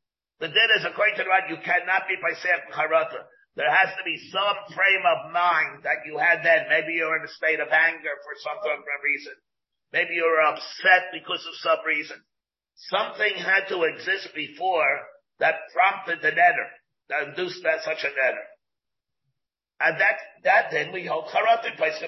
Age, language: 50-69, English